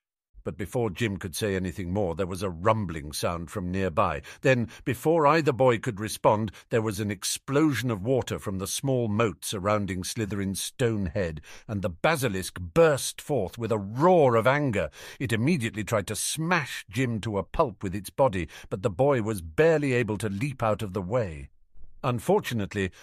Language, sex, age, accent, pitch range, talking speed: English, male, 50-69, British, 105-150 Hz, 180 wpm